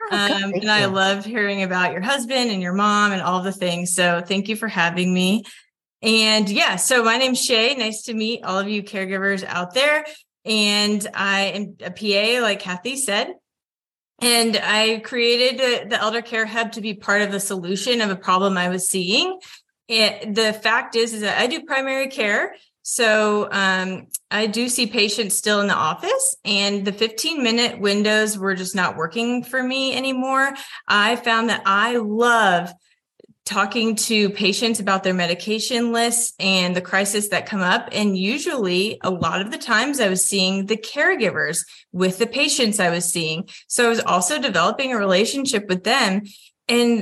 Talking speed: 180 wpm